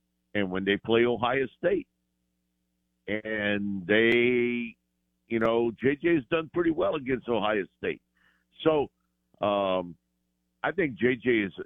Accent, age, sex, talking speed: American, 50-69, male, 125 wpm